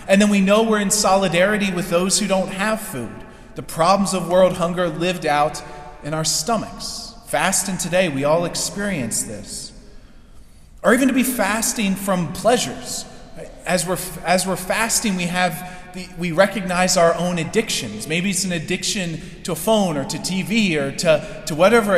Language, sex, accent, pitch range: English, male, American, 165-205 Hz